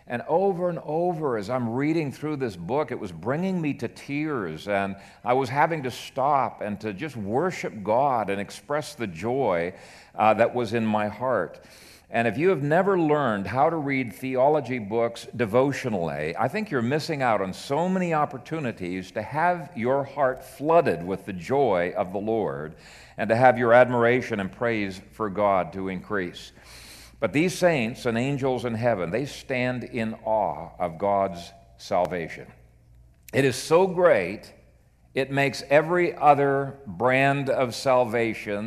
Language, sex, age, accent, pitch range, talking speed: English, male, 50-69, American, 110-145 Hz, 165 wpm